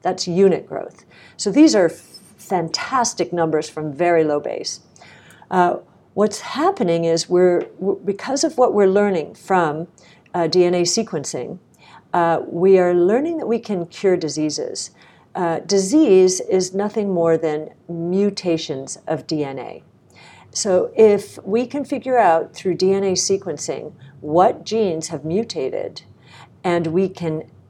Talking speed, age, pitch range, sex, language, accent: 130 wpm, 50-69, 165-200 Hz, female, English, American